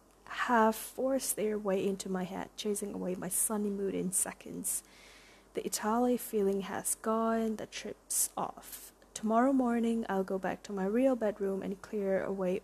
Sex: female